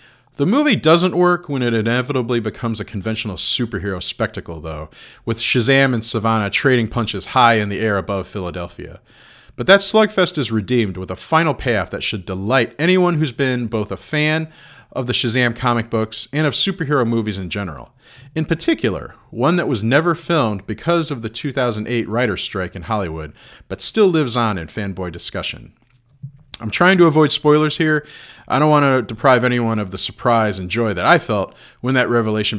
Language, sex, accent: English, male, American